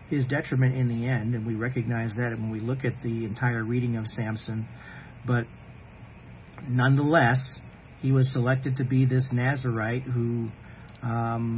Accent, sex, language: American, male, English